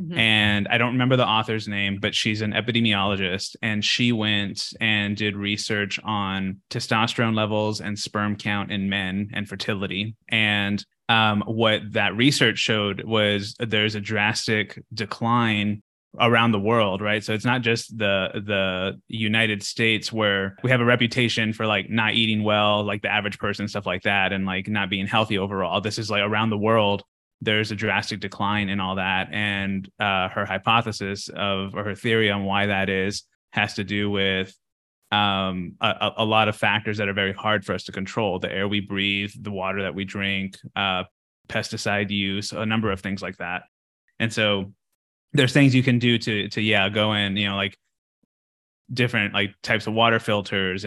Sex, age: male, 20-39